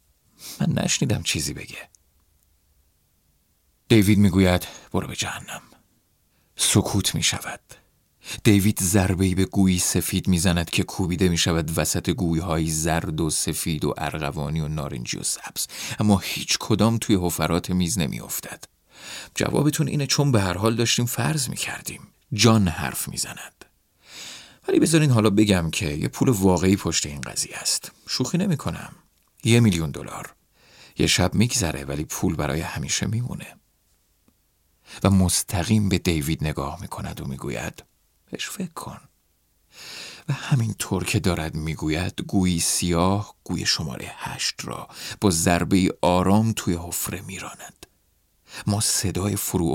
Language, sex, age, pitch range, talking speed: Persian, male, 40-59, 80-105 Hz, 135 wpm